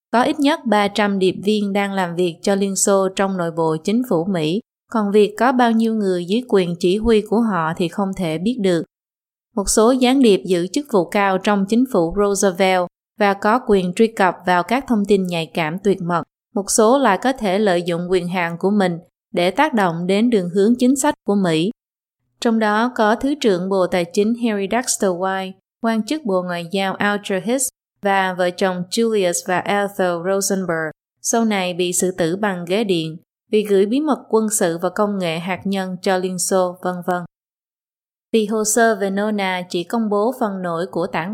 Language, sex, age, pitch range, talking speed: Vietnamese, female, 20-39, 180-220 Hz, 205 wpm